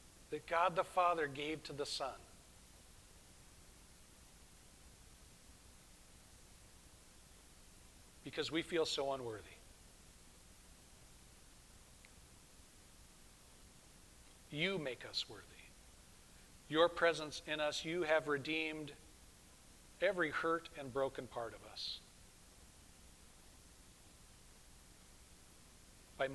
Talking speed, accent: 75 wpm, American